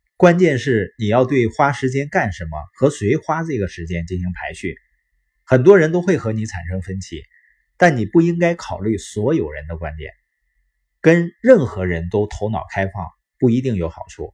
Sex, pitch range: male, 95-140 Hz